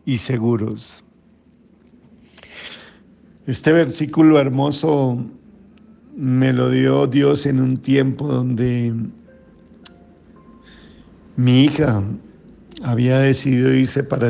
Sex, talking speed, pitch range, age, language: male, 80 wpm, 120-150 Hz, 50-69, Spanish